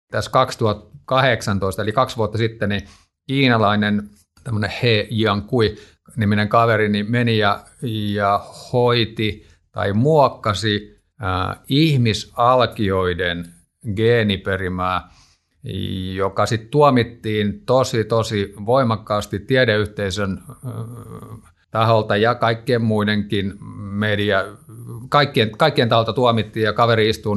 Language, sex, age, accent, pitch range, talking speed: Finnish, male, 50-69, native, 105-125 Hz, 90 wpm